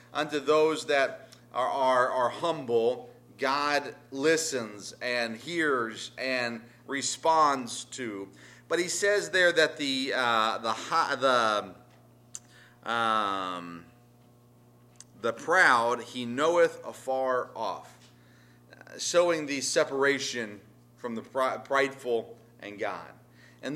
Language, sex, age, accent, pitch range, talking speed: English, male, 40-59, American, 120-165 Hz, 95 wpm